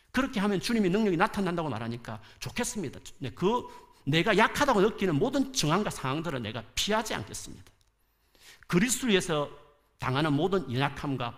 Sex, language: male, Korean